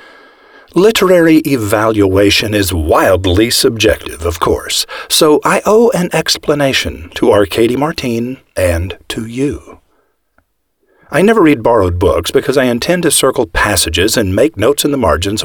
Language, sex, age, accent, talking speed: English, male, 50-69, American, 135 wpm